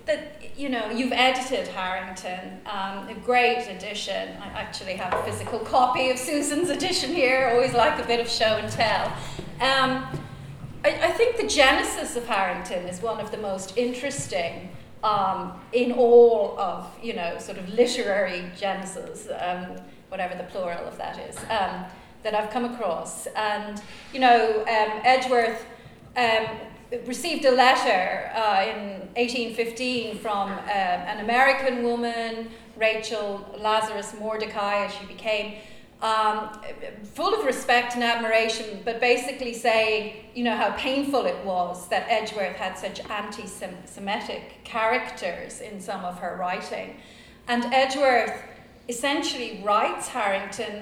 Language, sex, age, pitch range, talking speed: English, female, 30-49, 205-250 Hz, 135 wpm